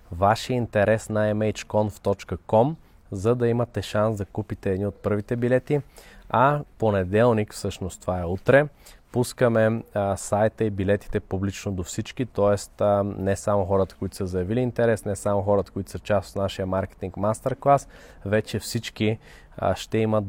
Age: 20-39